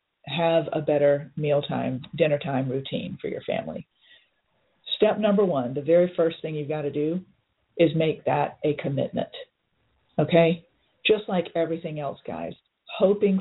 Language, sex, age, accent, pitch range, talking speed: English, female, 40-59, American, 155-185 Hz, 150 wpm